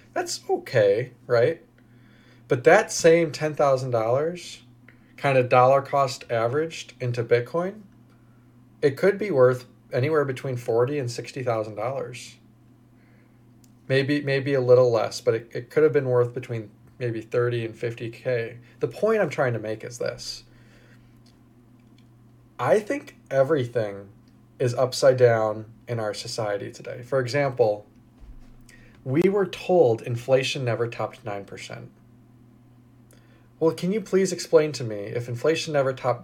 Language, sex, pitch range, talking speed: English, male, 120-140 Hz, 135 wpm